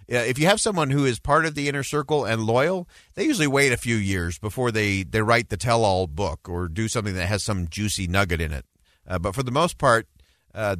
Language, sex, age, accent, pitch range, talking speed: English, male, 40-59, American, 90-120 Hz, 240 wpm